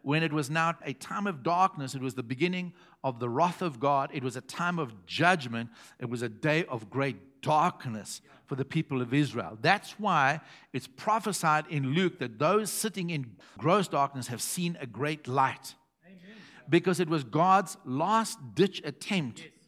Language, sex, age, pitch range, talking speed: English, male, 60-79, 140-185 Hz, 180 wpm